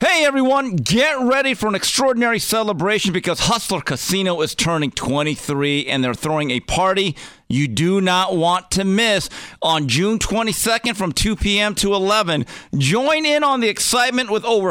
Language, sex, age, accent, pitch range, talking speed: English, male, 50-69, American, 150-225 Hz, 165 wpm